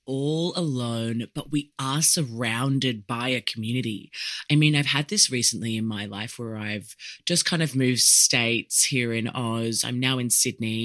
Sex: female